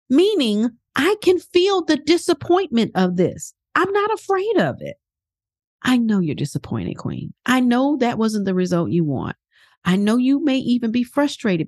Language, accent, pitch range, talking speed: English, American, 175-260 Hz, 170 wpm